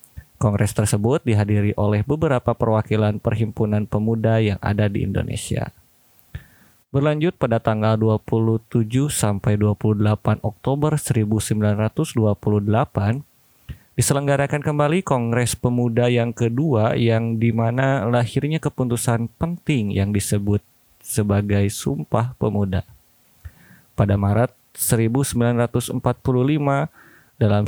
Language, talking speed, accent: Indonesian, 85 wpm, native